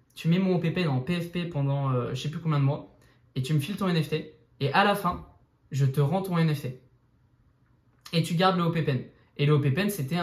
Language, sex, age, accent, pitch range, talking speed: French, male, 20-39, French, 135-160 Hz, 225 wpm